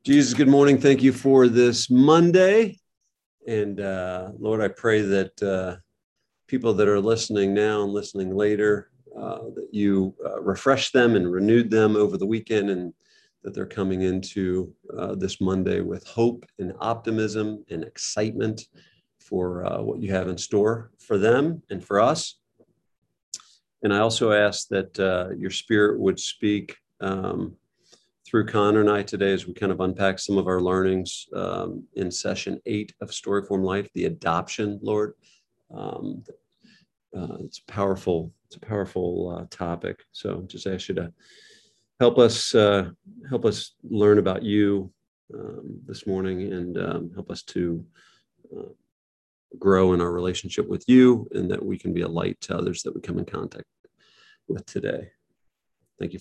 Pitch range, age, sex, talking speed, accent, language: 95-110 Hz, 50-69, male, 160 wpm, American, English